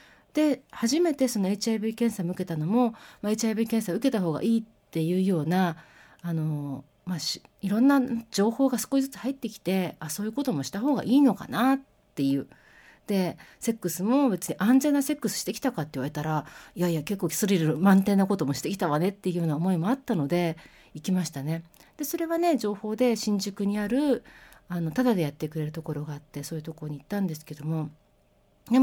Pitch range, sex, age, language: 155-230 Hz, female, 40-59, Japanese